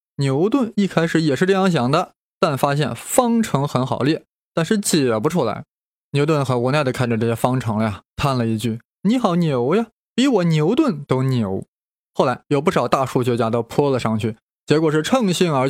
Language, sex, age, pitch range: Chinese, male, 20-39, 125-185 Hz